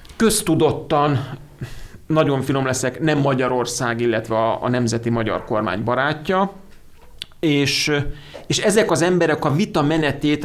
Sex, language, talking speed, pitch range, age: male, Hungarian, 115 wpm, 115-145 Hz, 40-59